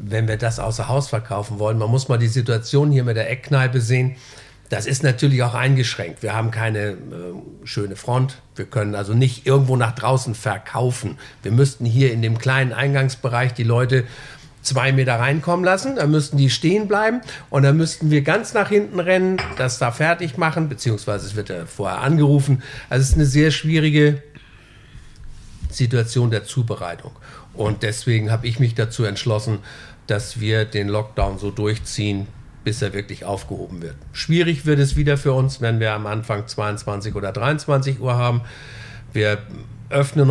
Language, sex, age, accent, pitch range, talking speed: German, male, 50-69, German, 110-140 Hz, 175 wpm